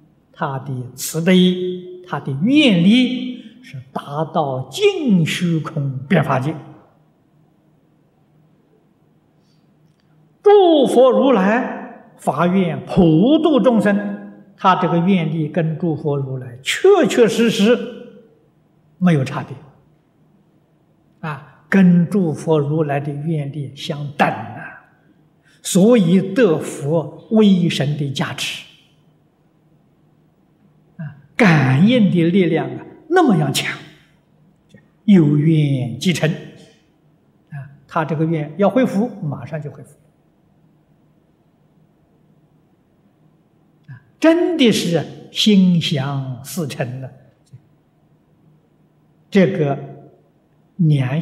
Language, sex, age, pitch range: Chinese, male, 60-79, 155-180 Hz